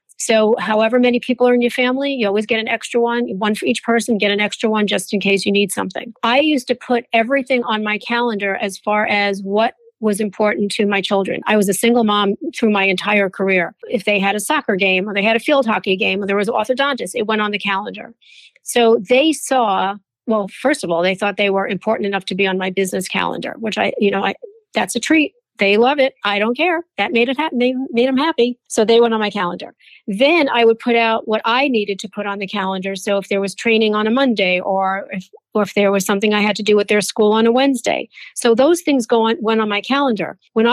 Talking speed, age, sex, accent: 255 wpm, 40-59, female, American